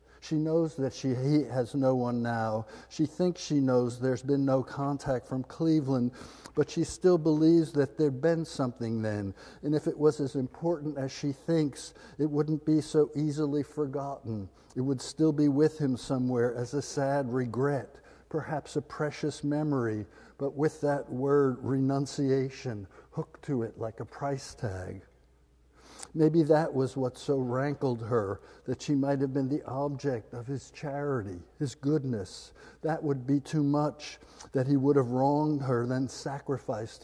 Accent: American